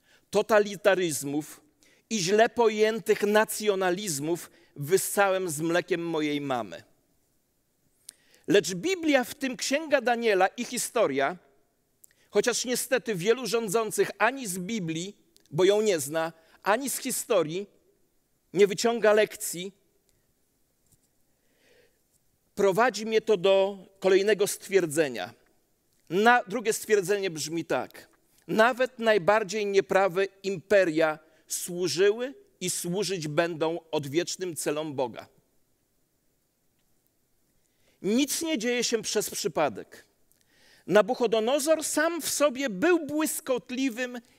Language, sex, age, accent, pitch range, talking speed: Polish, male, 40-59, native, 190-250 Hz, 95 wpm